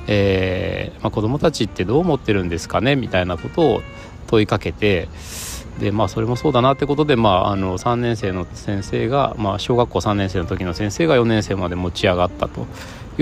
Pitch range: 90-125 Hz